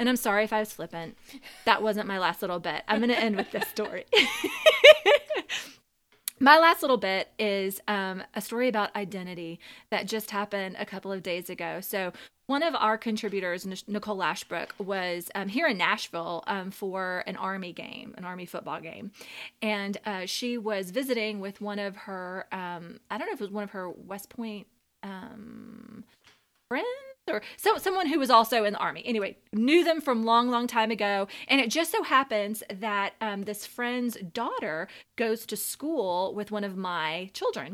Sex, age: female, 20-39